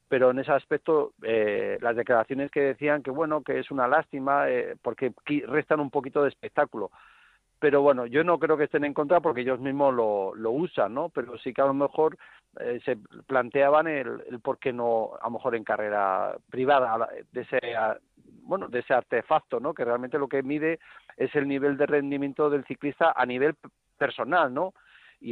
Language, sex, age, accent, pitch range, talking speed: Spanish, male, 50-69, Spanish, 125-150 Hz, 195 wpm